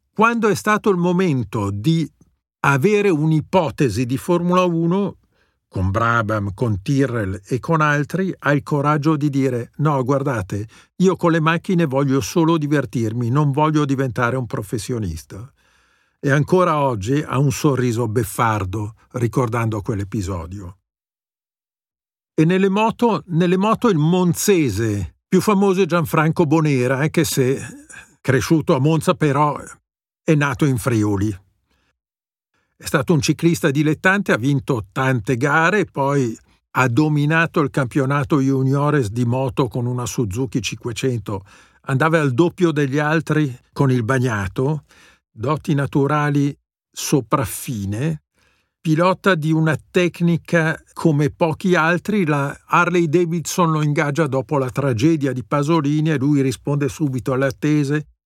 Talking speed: 125 wpm